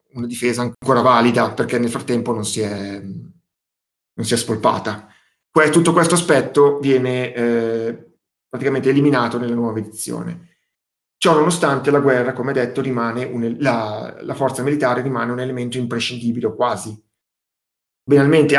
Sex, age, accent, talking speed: male, 30-49, native, 125 wpm